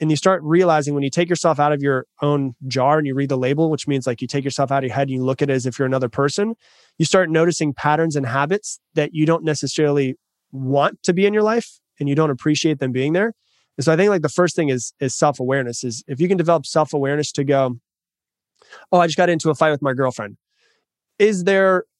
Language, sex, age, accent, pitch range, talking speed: English, male, 20-39, American, 135-165 Hz, 250 wpm